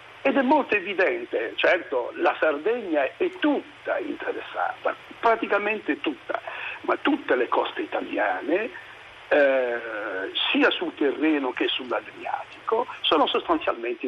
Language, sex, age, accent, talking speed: Italian, male, 60-79, native, 105 wpm